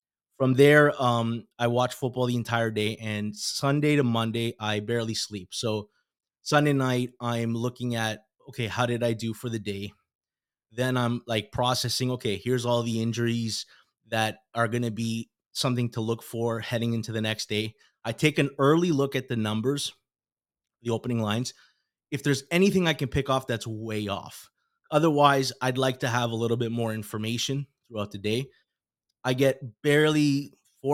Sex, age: male, 20-39